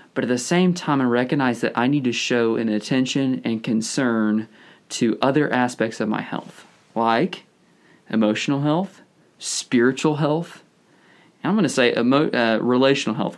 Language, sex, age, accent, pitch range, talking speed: English, male, 20-39, American, 110-140 Hz, 160 wpm